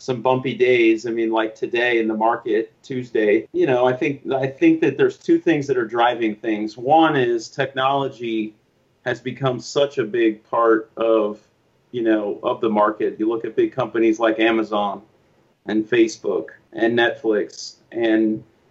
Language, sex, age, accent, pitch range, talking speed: English, male, 30-49, American, 110-140 Hz, 165 wpm